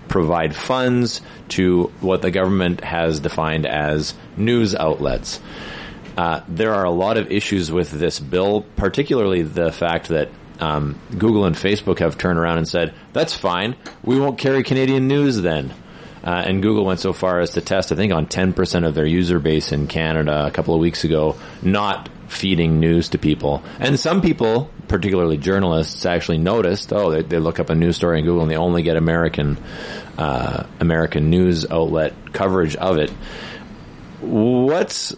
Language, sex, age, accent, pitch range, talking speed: English, male, 30-49, American, 80-100 Hz, 170 wpm